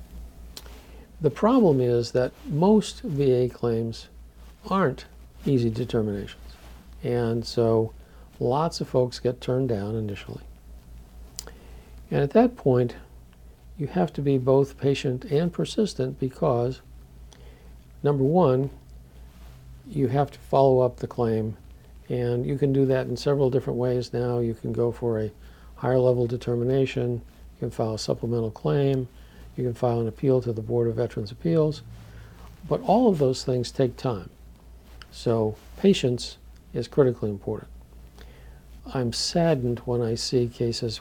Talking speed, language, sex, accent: 140 wpm, English, male, American